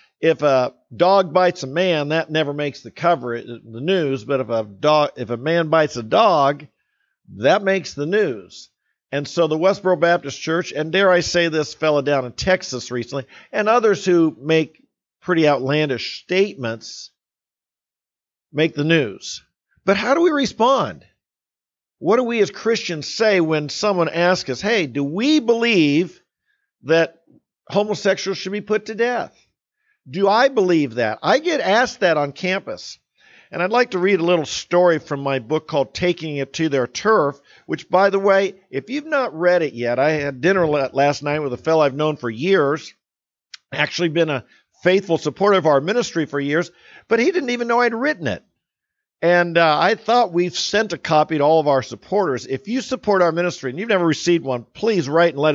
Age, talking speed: 50-69, 185 wpm